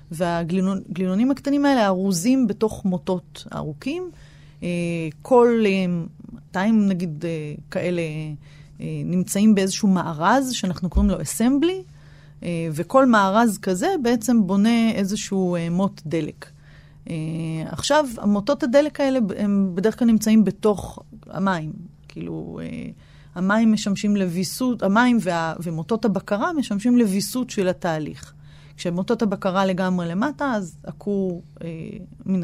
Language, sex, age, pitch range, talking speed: Hebrew, female, 30-49, 170-220 Hz, 105 wpm